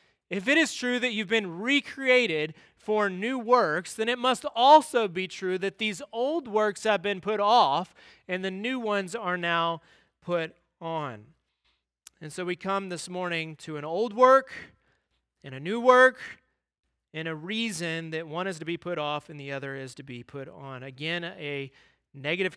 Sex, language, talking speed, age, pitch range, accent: male, English, 180 wpm, 30-49, 150-200 Hz, American